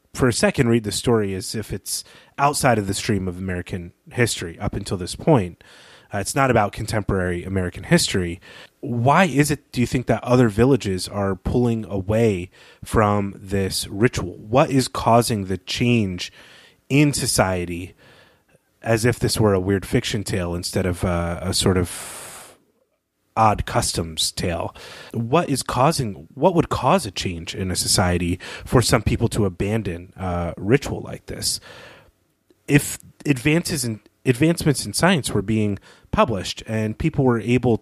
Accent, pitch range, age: American, 95-125 Hz, 30-49